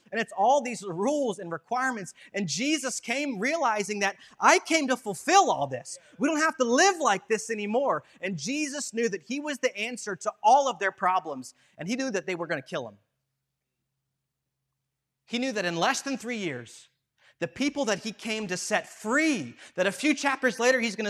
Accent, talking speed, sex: American, 205 wpm, male